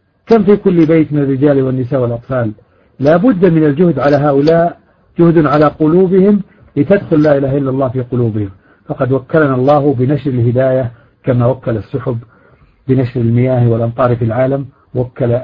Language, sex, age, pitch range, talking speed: Arabic, male, 50-69, 120-150 Hz, 135 wpm